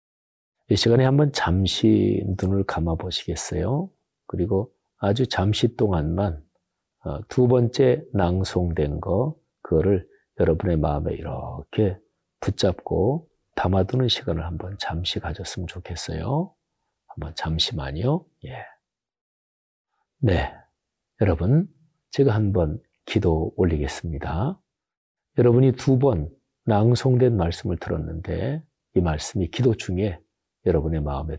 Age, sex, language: 40-59, male, Korean